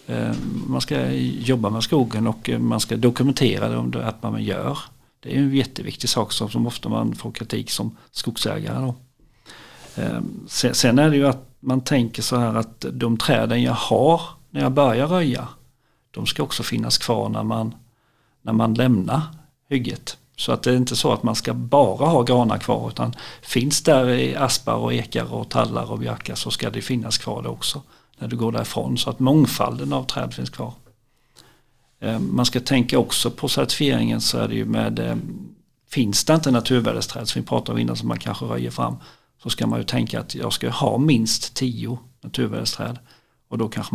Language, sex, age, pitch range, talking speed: Swedish, male, 50-69, 110-130 Hz, 190 wpm